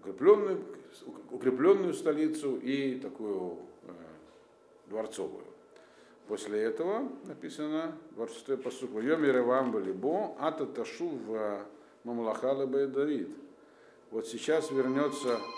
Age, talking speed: 50-69, 75 wpm